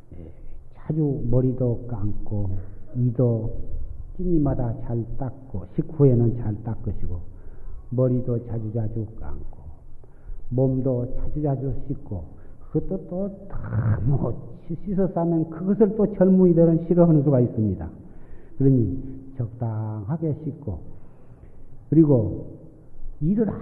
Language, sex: Korean, male